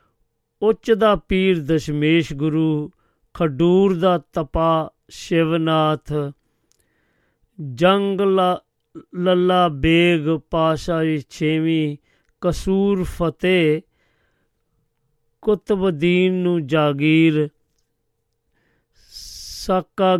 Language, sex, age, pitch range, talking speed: Punjabi, male, 40-59, 150-180 Hz, 60 wpm